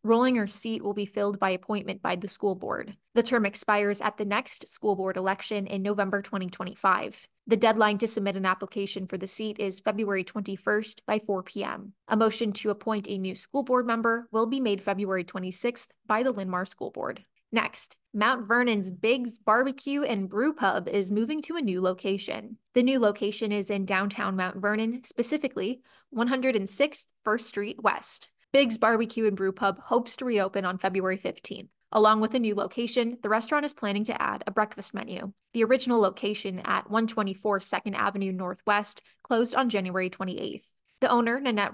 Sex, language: female, English